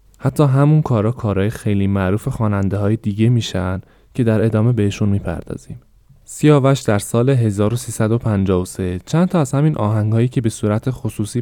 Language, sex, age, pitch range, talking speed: Persian, male, 20-39, 95-120 Hz, 140 wpm